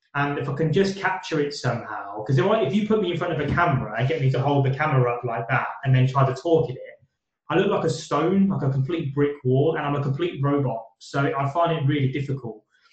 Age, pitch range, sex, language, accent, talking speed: 20-39, 130-155 Hz, male, English, British, 265 wpm